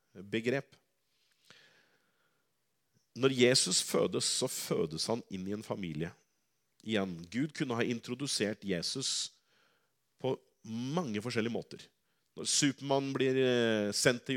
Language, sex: English, male